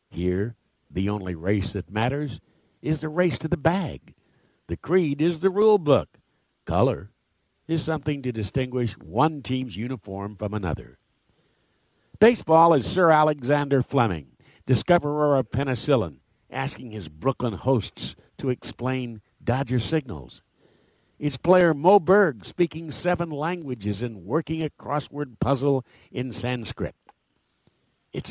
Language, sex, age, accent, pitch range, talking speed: English, male, 60-79, American, 105-155 Hz, 125 wpm